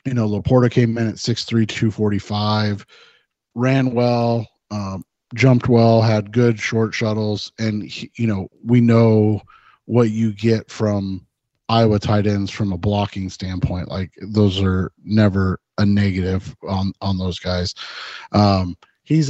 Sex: male